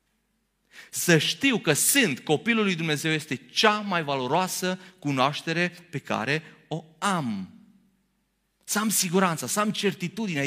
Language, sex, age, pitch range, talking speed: Romanian, male, 30-49, 180-235 Hz, 125 wpm